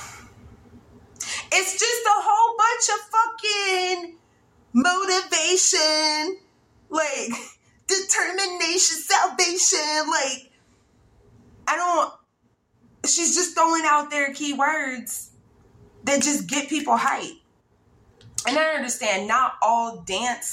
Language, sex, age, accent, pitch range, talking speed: English, female, 20-39, American, 220-360 Hz, 90 wpm